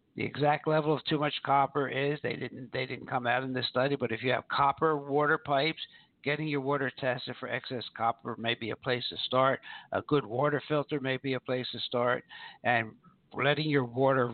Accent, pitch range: American, 120-140 Hz